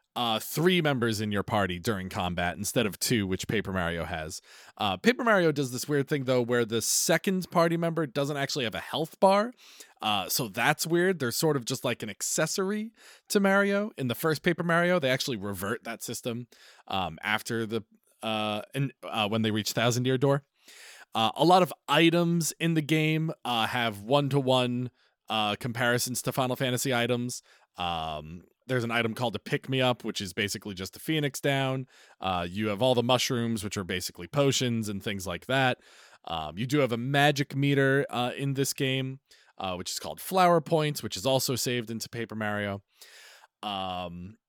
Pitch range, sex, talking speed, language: 110-150 Hz, male, 185 wpm, English